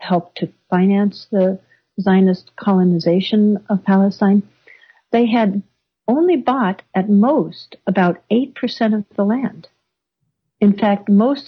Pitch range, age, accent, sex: 180-230 Hz, 60-79, American, female